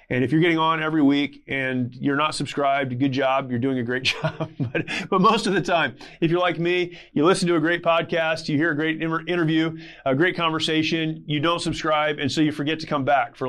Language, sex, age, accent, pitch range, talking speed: English, male, 30-49, American, 145-180 Hz, 235 wpm